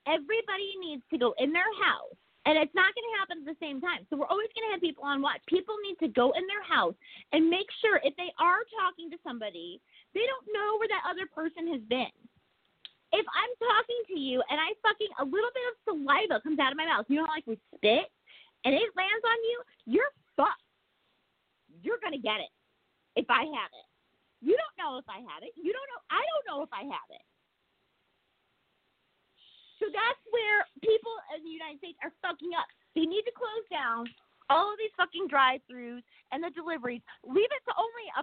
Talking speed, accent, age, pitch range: 215 wpm, American, 30-49, 275-415 Hz